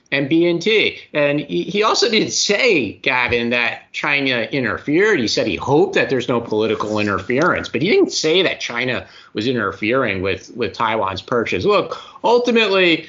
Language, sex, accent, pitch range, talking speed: English, male, American, 110-160 Hz, 155 wpm